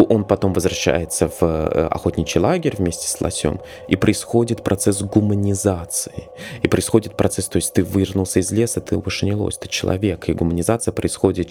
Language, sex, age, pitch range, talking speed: Russian, male, 20-39, 95-115 Hz, 160 wpm